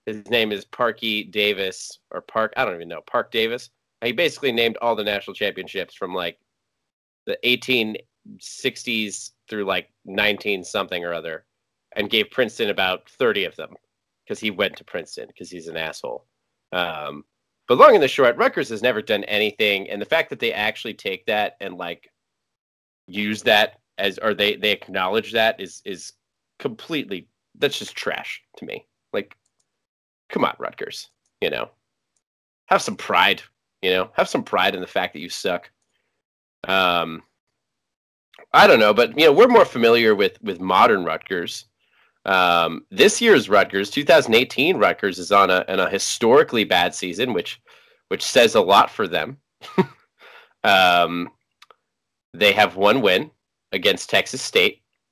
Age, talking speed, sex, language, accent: 30-49, 160 wpm, male, English, American